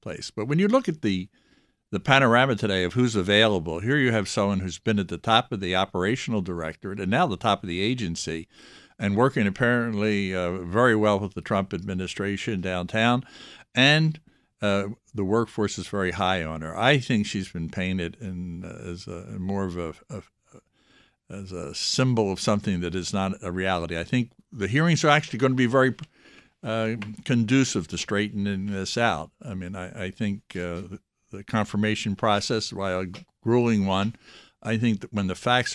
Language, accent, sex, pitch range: English, American, male, 90-110 Hz